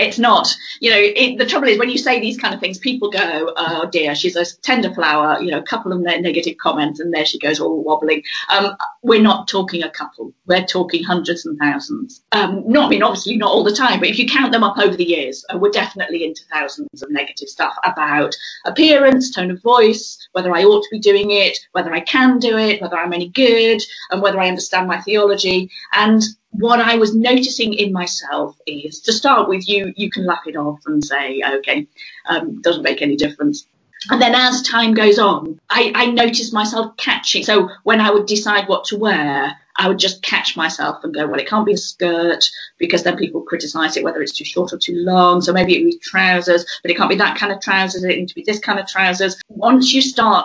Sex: female